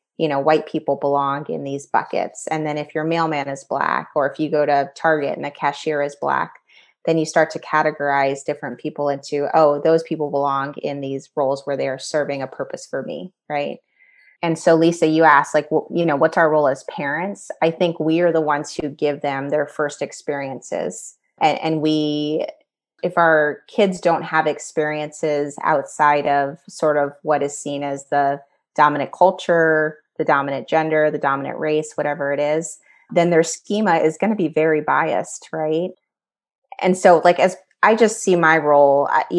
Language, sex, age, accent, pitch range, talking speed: English, female, 30-49, American, 145-165 Hz, 190 wpm